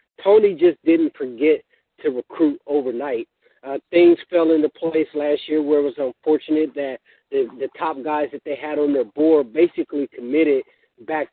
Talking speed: 170 wpm